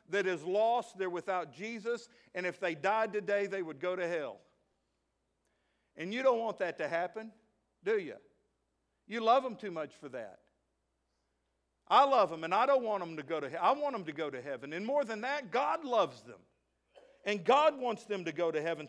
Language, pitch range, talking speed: English, 175-260 Hz, 210 wpm